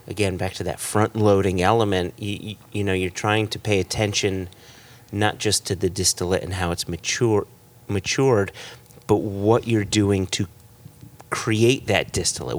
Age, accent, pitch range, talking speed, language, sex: 30-49, American, 100-120 Hz, 160 wpm, English, male